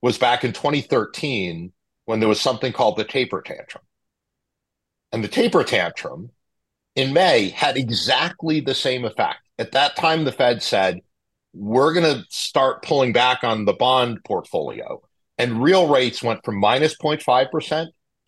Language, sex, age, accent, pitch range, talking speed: English, male, 40-59, American, 110-140 Hz, 150 wpm